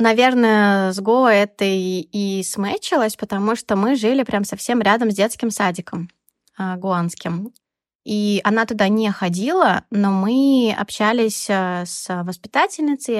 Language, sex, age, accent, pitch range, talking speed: Russian, female, 20-39, native, 195-255 Hz, 130 wpm